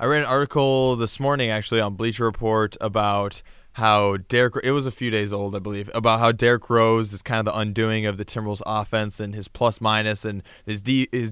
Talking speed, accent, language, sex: 200 wpm, American, English, male